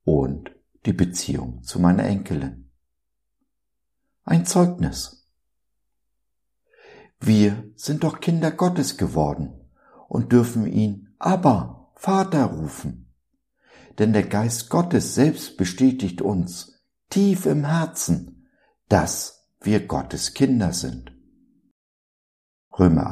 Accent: German